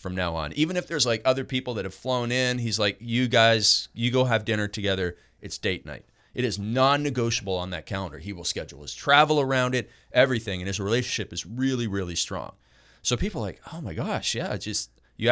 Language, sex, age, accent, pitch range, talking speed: English, male, 30-49, American, 95-125 Hz, 220 wpm